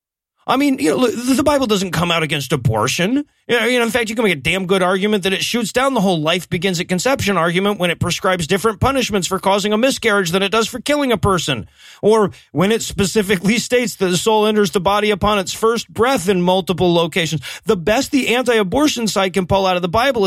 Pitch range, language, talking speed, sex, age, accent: 190-240 Hz, English, 220 wpm, male, 40-59, American